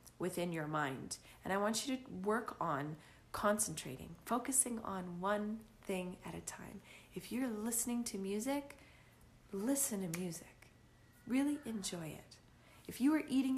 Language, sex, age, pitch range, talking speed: English, female, 30-49, 170-250 Hz, 145 wpm